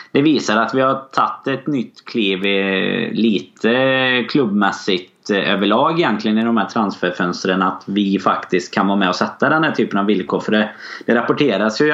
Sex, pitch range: male, 95-110 Hz